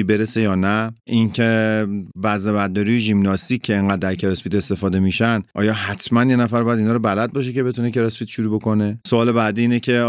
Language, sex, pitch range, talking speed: Persian, male, 105-120 Hz, 185 wpm